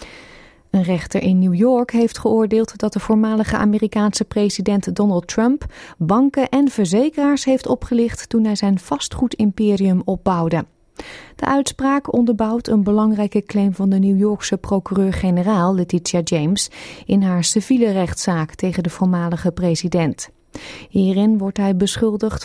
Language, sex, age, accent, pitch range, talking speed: Dutch, female, 30-49, Dutch, 185-235 Hz, 130 wpm